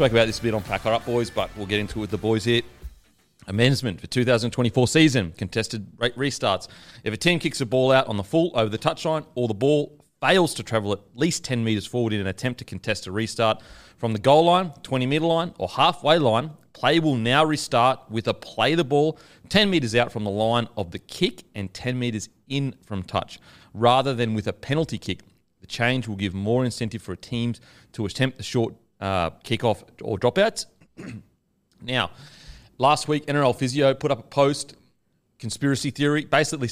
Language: English